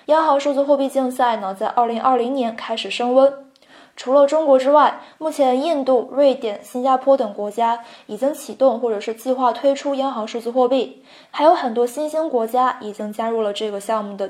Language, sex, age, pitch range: Chinese, female, 20-39, 225-275 Hz